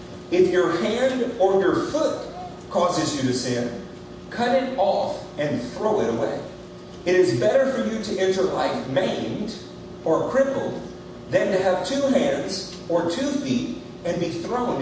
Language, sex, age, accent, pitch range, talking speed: English, male, 40-59, American, 165-235 Hz, 160 wpm